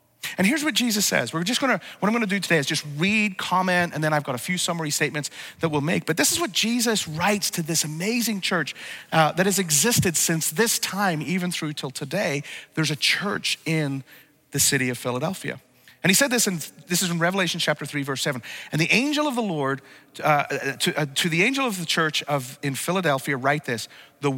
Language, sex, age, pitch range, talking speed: English, male, 40-59, 150-215 Hz, 225 wpm